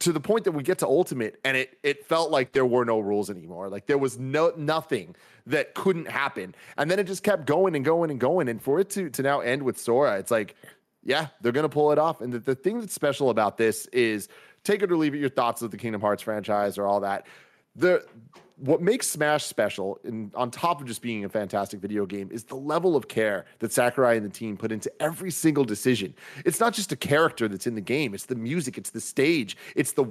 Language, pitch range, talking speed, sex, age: English, 115-160 Hz, 245 wpm, male, 30-49